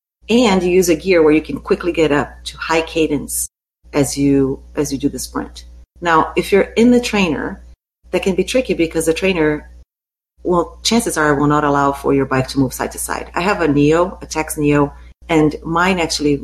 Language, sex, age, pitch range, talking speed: English, female, 40-59, 135-155 Hz, 215 wpm